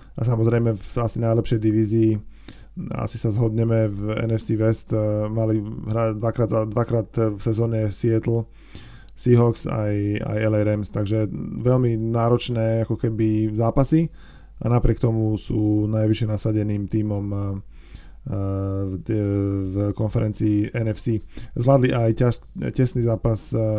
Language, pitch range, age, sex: Slovak, 105-115 Hz, 20-39, male